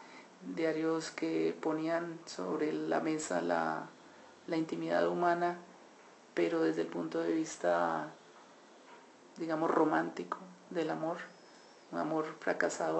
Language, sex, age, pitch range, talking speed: Spanish, male, 40-59, 155-170 Hz, 105 wpm